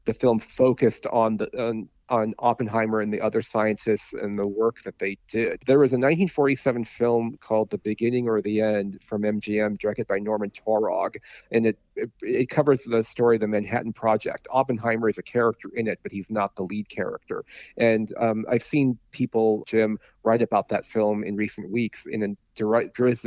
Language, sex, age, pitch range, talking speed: English, male, 40-59, 105-120 Hz, 190 wpm